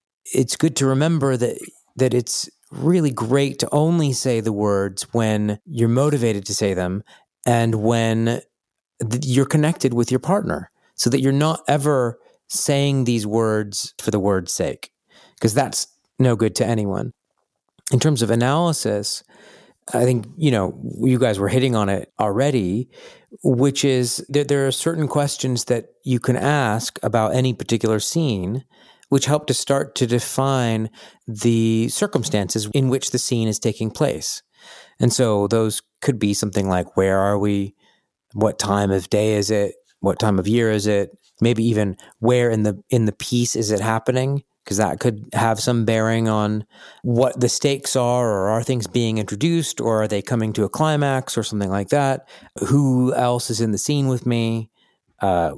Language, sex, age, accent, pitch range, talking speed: English, male, 40-59, American, 105-135 Hz, 175 wpm